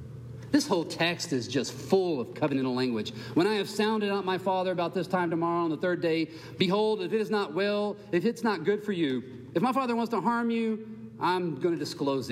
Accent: American